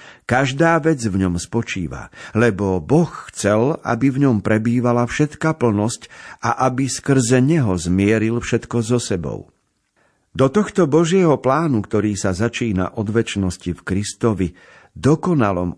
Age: 50-69